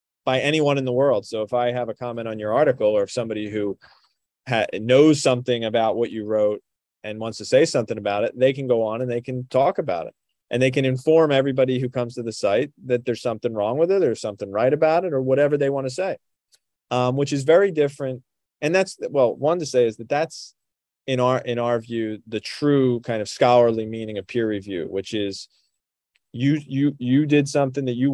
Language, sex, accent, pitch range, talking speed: English, male, American, 110-140 Hz, 225 wpm